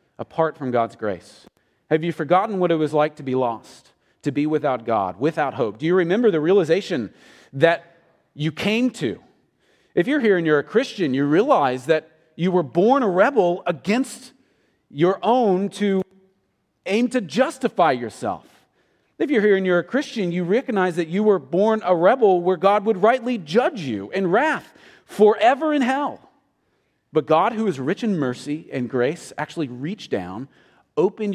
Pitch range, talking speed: 135-195 Hz, 175 wpm